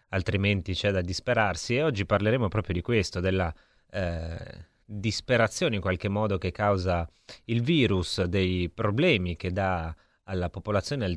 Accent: native